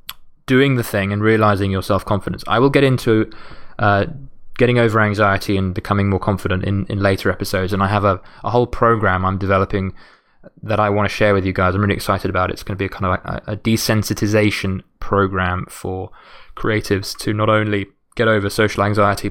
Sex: male